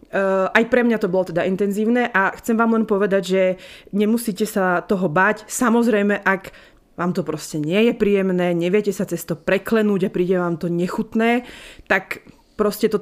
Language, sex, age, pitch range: Slovak, female, 20-39, 185-225 Hz